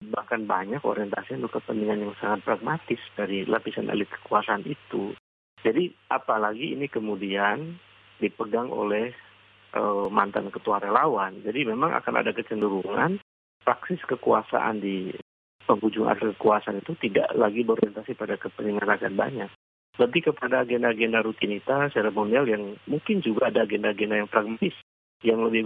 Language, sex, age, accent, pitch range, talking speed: Indonesian, male, 40-59, native, 105-120 Hz, 130 wpm